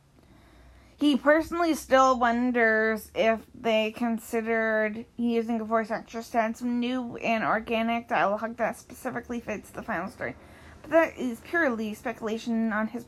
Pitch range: 215-250 Hz